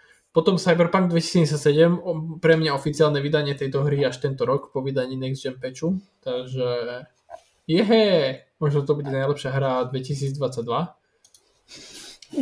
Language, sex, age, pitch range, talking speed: Slovak, male, 20-39, 130-165 Hz, 125 wpm